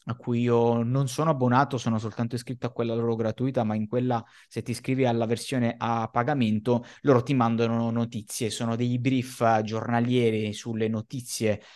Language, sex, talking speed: Italian, male, 170 wpm